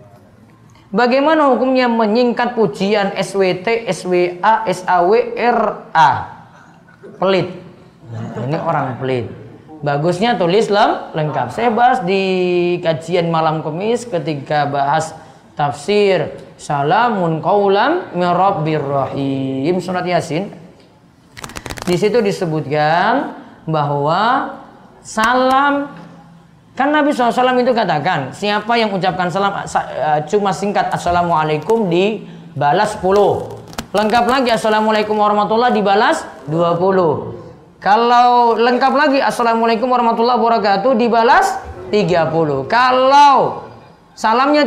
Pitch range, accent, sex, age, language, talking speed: 160-240 Hz, native, female, 20-39, Indonesian, 85 wpm